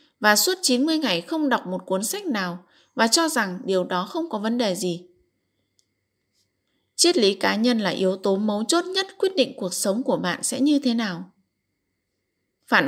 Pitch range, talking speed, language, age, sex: 185-270 Hz, 190 wpm, Vietnamese, 20-39, female